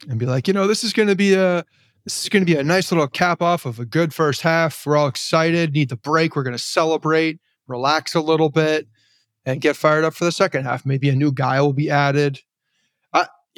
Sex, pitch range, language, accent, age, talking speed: male, 130-165 Hz, English, American, 30-49, 250 wpm